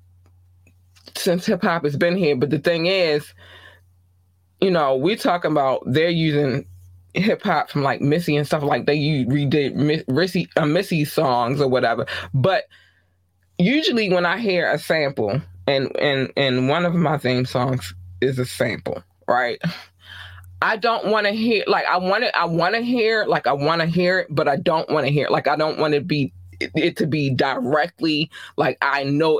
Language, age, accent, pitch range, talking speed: English, 20-39, American, 130-175 Hz, 185 wpm